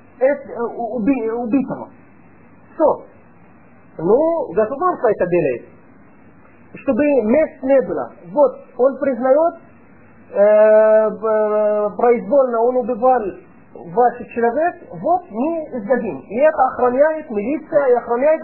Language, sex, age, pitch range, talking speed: Russian, male, 40-59, 235-315 Hz, 90 wpm